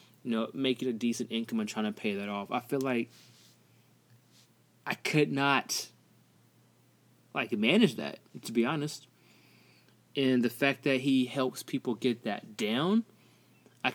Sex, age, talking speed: male, 20-39, 150 wpm